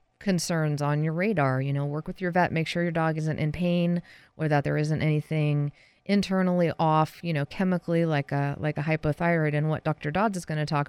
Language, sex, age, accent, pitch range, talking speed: English, female, 30-49, American, 135-155 Hz, 220 wpm